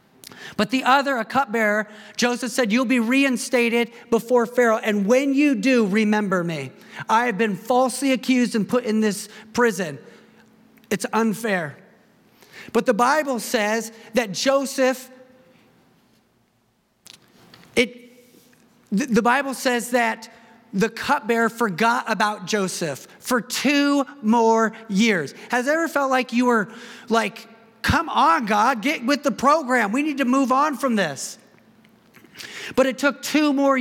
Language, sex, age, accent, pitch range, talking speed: English, male, 40-59, American, 215-255 Hz, 135 wpm